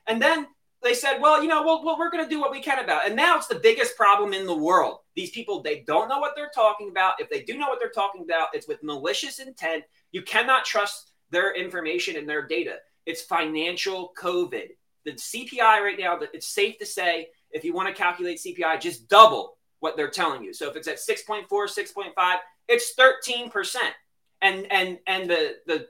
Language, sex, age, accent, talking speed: English, male, 30-49, American, 215 wpm